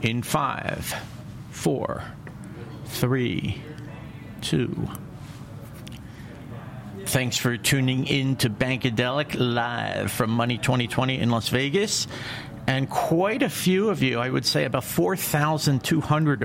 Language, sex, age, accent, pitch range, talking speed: English, male, 50-69, American, 110-140 Hz, 105 wpm